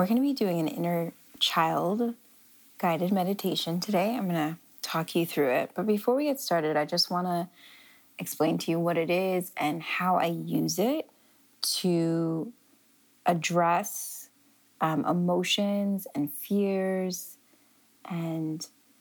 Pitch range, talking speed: 170-235 Hz, 140 wpm